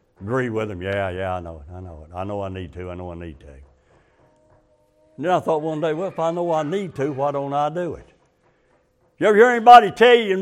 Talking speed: 265 wpm